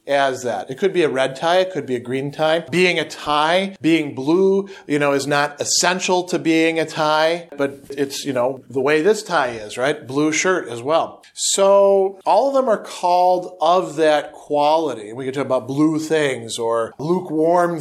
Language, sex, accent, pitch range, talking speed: English, male, American, 135-180 Hz, 200 wpm